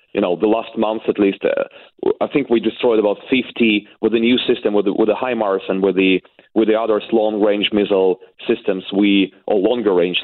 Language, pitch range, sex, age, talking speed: English, 95-115 Hz, male, 30-49, 215 wpm